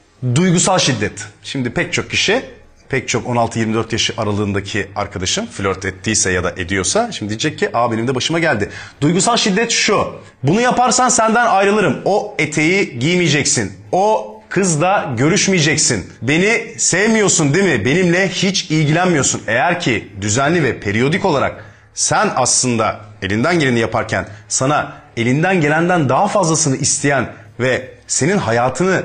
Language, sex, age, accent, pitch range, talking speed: Turkish, male, 40-59, native, 105-180 Hz, 135 wpm